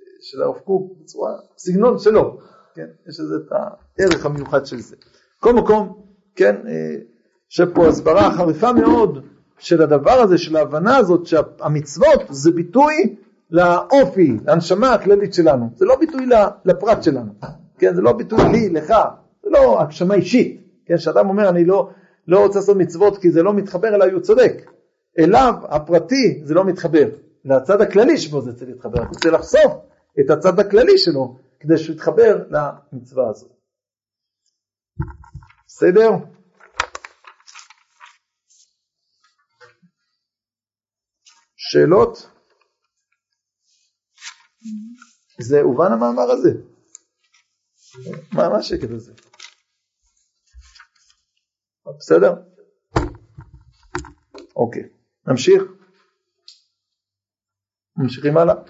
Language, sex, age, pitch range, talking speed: Hebrew, male, 50-69, 140-215 Hz, 100 wpm